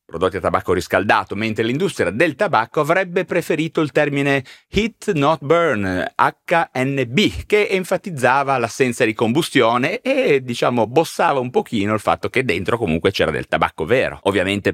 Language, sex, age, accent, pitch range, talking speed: Italian, male, 30-49, native, 95-155 Hz, 145 wpm